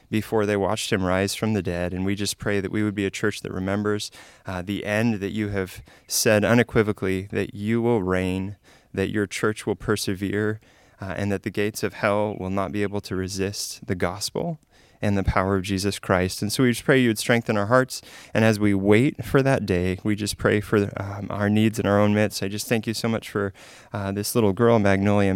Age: 20-39